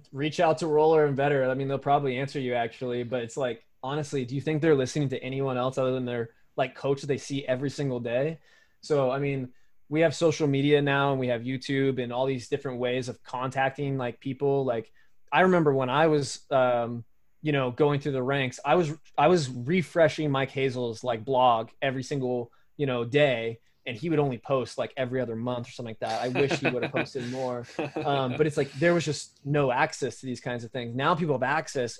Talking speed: 230 wpm